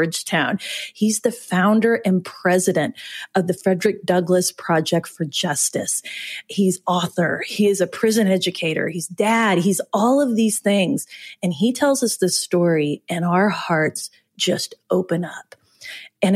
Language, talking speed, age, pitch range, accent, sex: English, 145 wpm, 30-49, 170-215 Hz, American, female